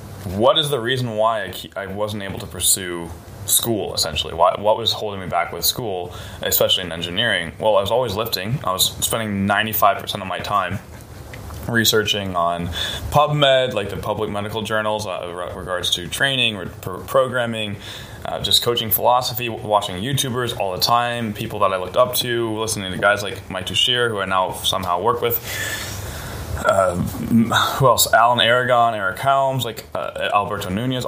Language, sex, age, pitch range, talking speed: German, male, 20-39, 95-120 Hz, 165 wpm